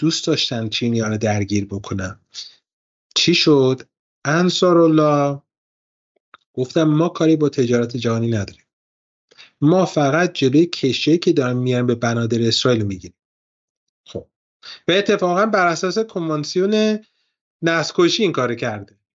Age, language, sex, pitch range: 30-49, Persian, male, 115-180 Hz